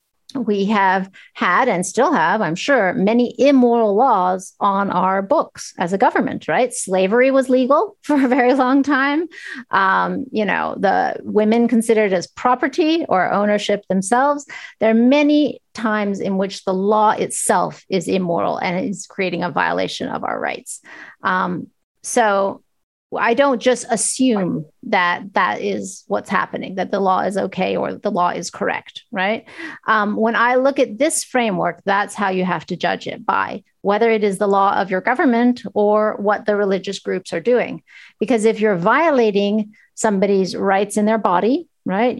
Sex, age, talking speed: female, 30-49, 170 wpm